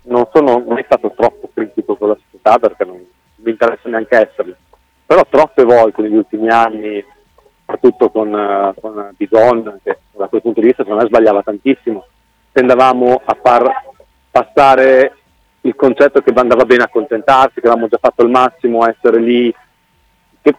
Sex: male